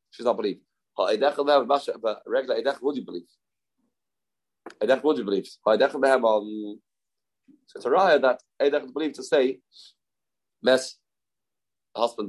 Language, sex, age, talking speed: English, male, 30-49, 100 wpm